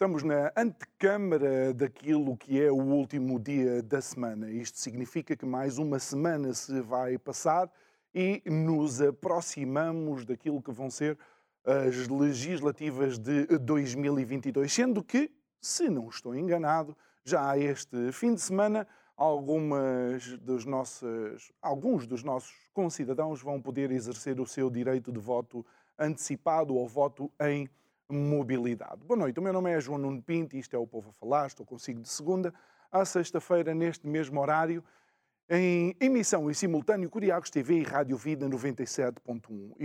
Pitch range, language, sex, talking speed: 130-160 Hz, Portuguese, male, 145 wpm